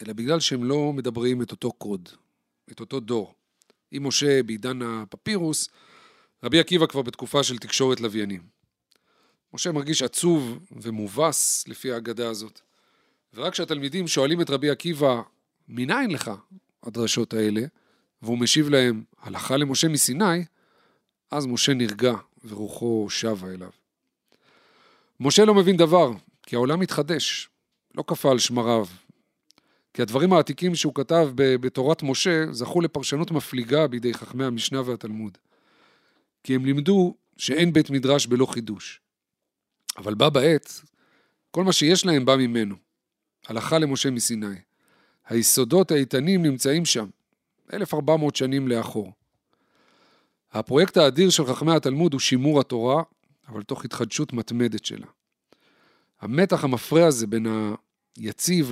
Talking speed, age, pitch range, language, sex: 125 wpm, 40-59, 115-160 Hz, Hebrew, male